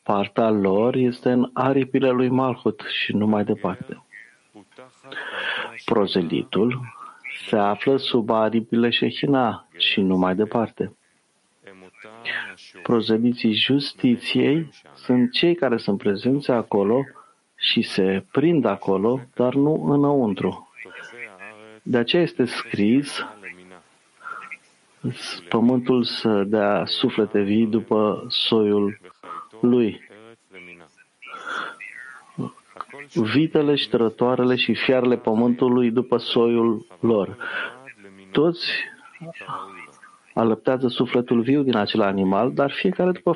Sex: male